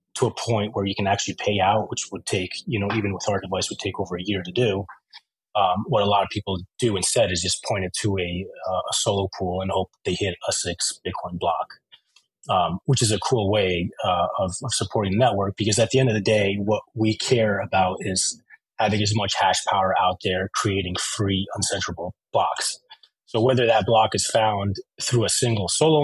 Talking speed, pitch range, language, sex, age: 220 wpm, 95-110 Hz, English, male, 30-49